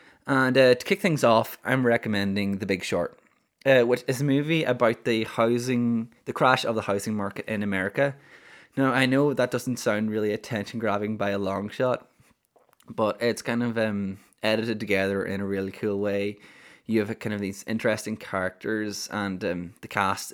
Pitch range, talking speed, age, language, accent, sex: 100-120 Hz, 185 wpm, 20-39, English, Irish, male